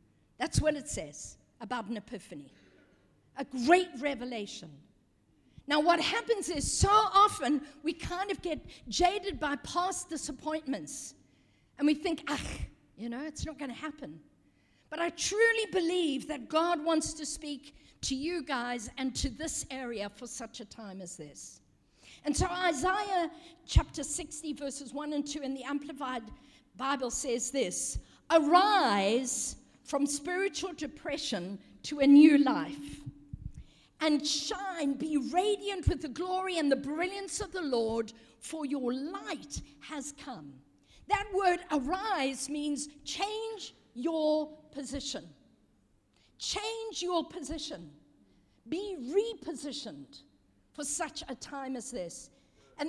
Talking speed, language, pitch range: 135 wpm, English, 260-350 Hz